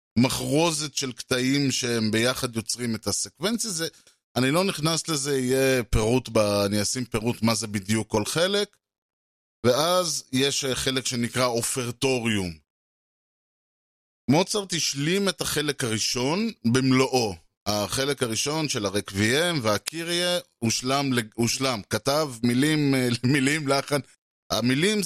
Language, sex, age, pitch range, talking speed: Hebrew, male, 20-39, 115-155 Hz, 115 wpm